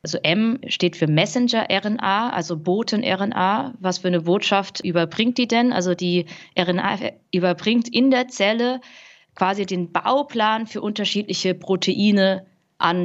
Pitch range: 170-205 Hz